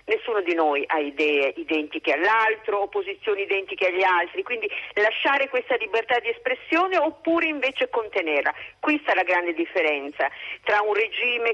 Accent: native